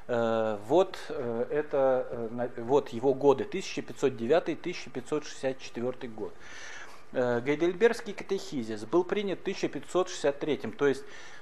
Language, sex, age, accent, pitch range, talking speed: Russian, male, 40-59, native, 120-160 Hz, 70 wpm